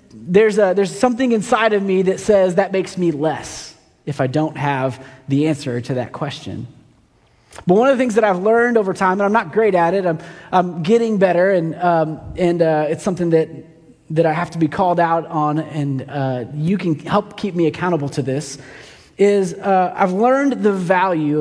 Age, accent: 30-49, American